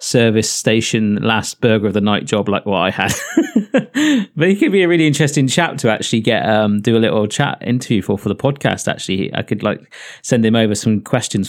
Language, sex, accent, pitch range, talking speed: English, male, British, 105-135 Hz, 225 wpm